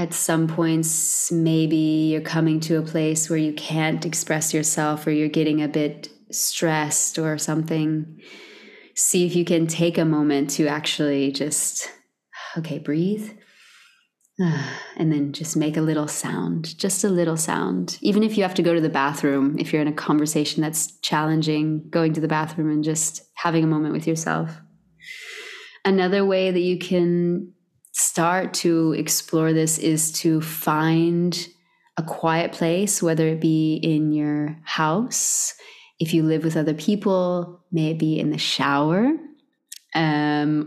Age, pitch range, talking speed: 20-39, 155-180 Hz, 155 wpm